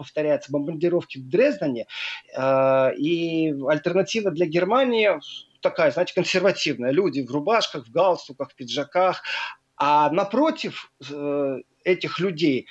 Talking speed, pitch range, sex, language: 115 wpm, 155-215 Hz, male, Russian